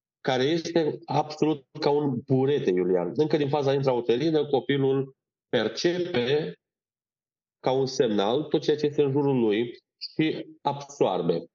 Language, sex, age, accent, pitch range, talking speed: Romanian, male, 30-49, native, 120-165 Hz, 130 wpm